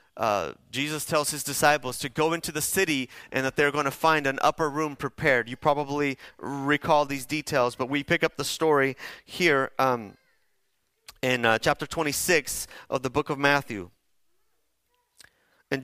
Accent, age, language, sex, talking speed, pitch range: American, 30-49, English, male, 165 wpm, 135-160 Hz